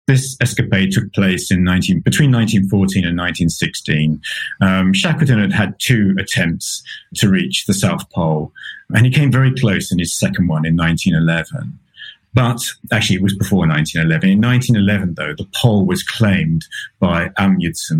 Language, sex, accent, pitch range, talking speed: English, male, British, 95-125 Hz, 155 wpm